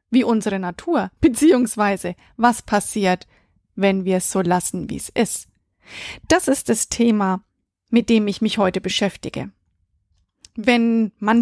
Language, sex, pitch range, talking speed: German, female, 200-255 Hz, 135 wpm